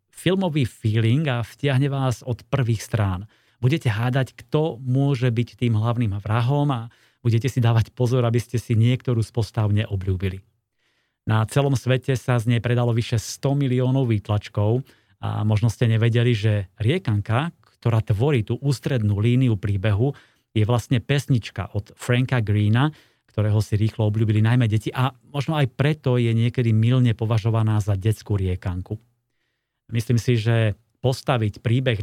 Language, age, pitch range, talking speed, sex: Slovak, 30-49, 110-125 Hz, 145 wpm, male